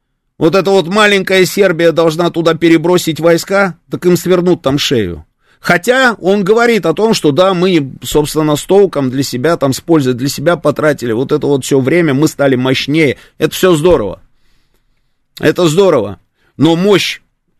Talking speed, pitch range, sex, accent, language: 165 wpm, 130-185 Hz, male, native, Russian